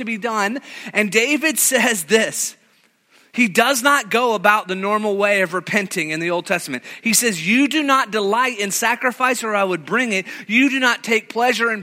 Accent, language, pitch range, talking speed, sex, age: American, English, 150-215 Hz, 205 wpm, male, 30-49